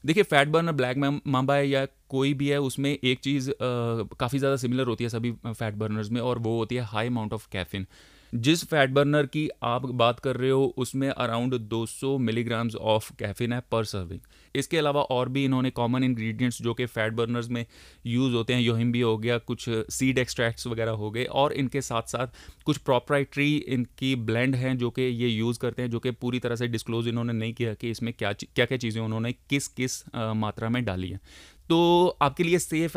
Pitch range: 115-140 Hz